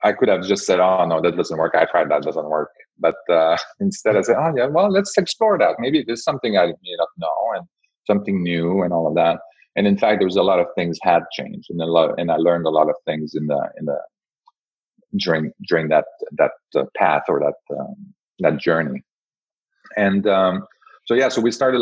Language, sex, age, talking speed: English, male, 40-59, 225 wpm